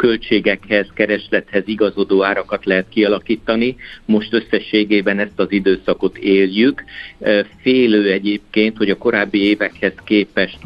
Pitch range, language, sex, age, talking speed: 95-105 Hz, Hungarian, male, 50-69, 105 wpm